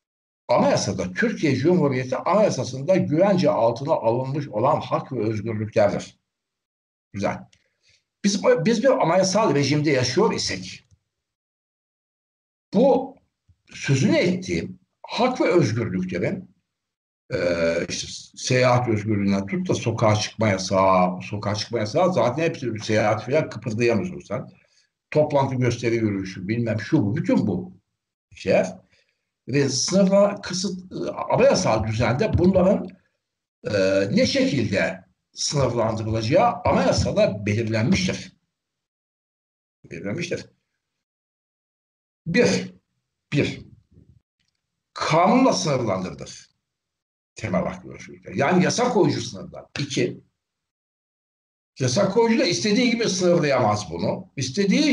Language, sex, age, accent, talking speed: Turkish, male, 60-79, native, 95 wpm